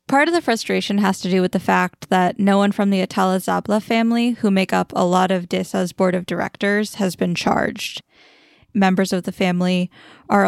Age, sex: 10-29, female